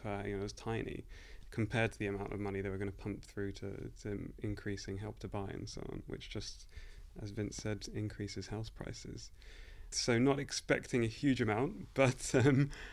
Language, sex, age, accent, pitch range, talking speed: English, male, 30-49, British, 100-115 Hz, 195 wpm